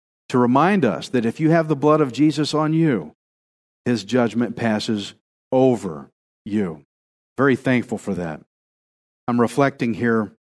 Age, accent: 40-59, American